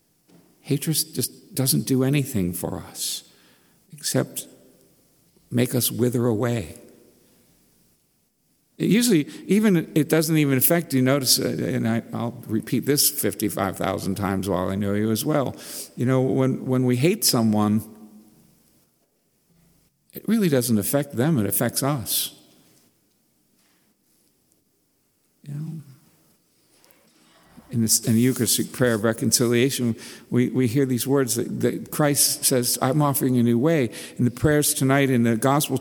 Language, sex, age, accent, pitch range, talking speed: English, male, 60-79, American, 105-130 Hz, 130 wpm